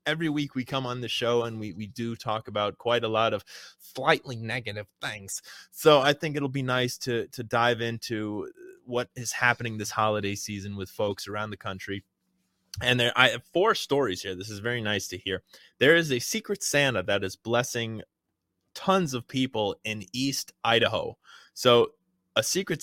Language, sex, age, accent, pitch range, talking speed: English, male, 20-39, American, 100-125 Hz, 185 wpm